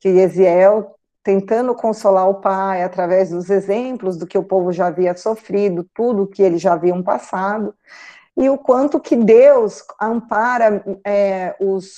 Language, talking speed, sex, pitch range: Portuguese, 145 wpm, female, 190-240 Hz